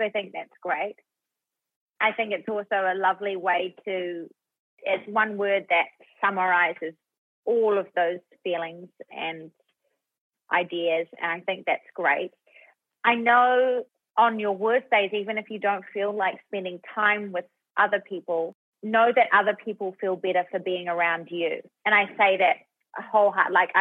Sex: female